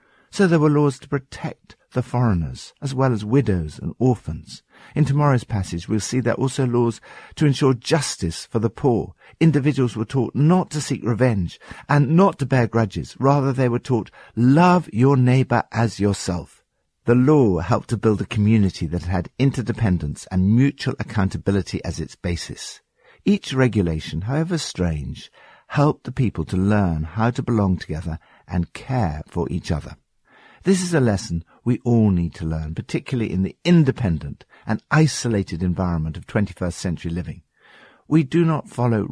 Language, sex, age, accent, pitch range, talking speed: English, male, 50-69, British, 90-130 Hz, 165 wpm